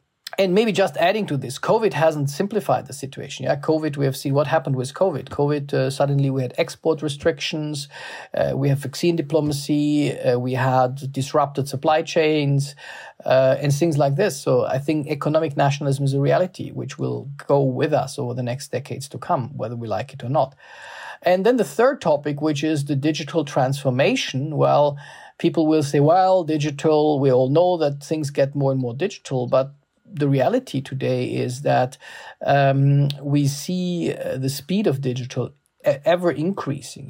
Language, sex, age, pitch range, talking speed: English, male, 40-59, 135-160 Hz, 180 wpm